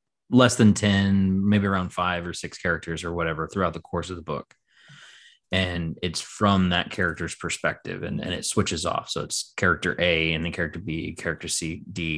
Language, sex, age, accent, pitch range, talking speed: English, male, 20-39, American, 85-100 Hz, 190 wpm